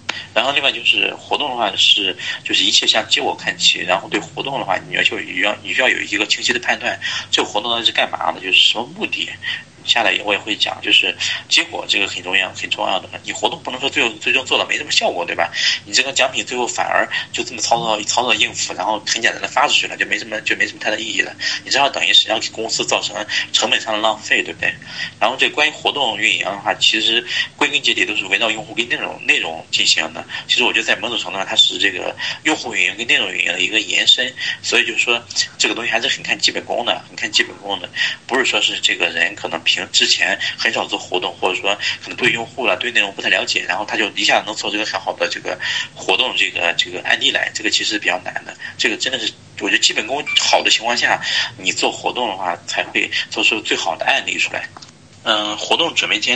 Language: Chinese